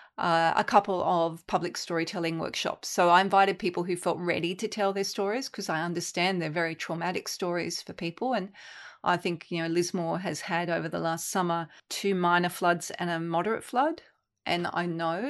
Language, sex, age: English, female, 30-49